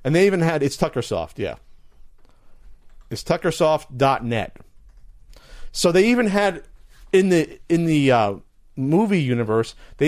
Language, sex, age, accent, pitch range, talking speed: English, male, 40-59, American, 120-165 Hz, 125 wpm